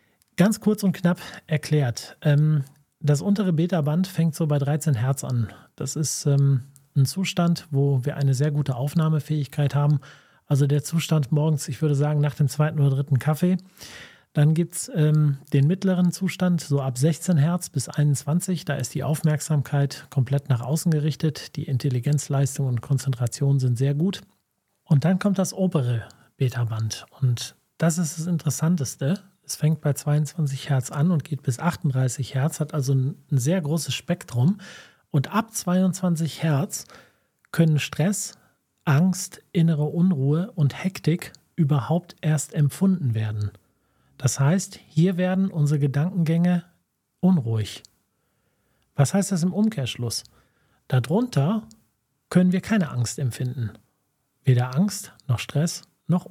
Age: 40-59